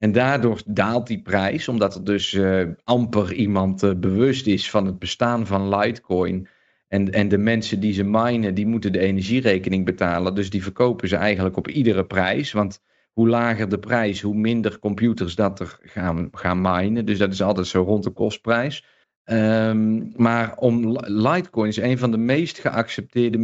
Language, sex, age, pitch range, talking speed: Dutch, male, 40-59, 100-120 Hz, 180 wpm